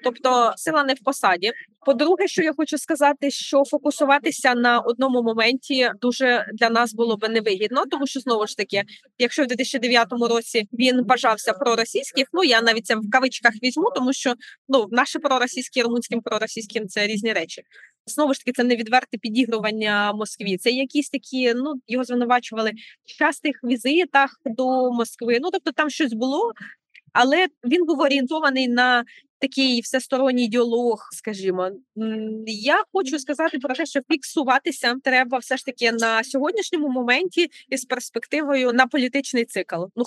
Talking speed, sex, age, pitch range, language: 155 wpm, female, 20-39, 225-275 Hz, Ukrainian